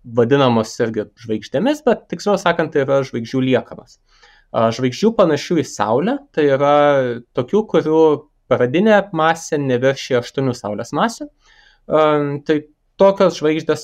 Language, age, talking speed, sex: English, 20-39, 120 wpm, male